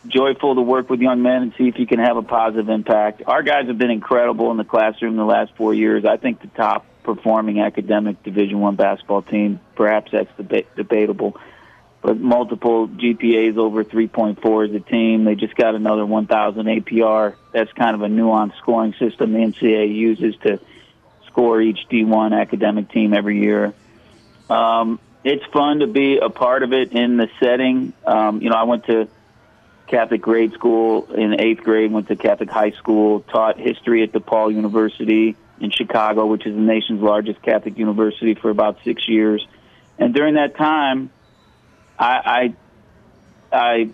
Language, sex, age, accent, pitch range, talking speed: English, male, 40-59, American, 110-120 Hz, 170 wpm